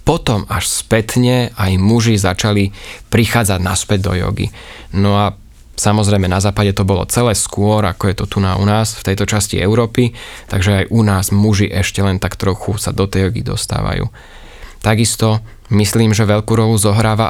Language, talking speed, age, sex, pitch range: Slovak, 175 wpm, 20-39, male, 95-110 Hz